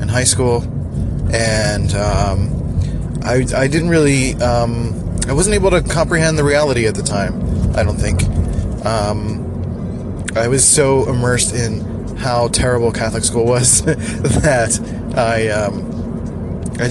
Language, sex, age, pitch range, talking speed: English, male, 20-39, 100-125 Hz, 135 wpm